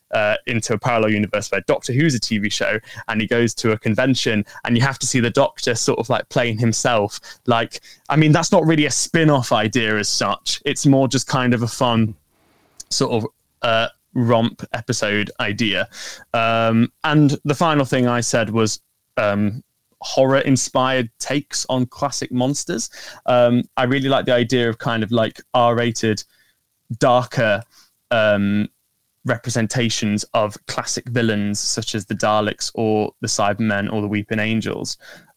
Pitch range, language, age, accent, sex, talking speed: 110-130 Hz, English, 20-39, British, male, 160 wpm